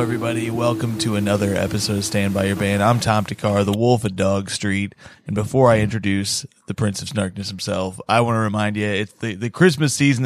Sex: male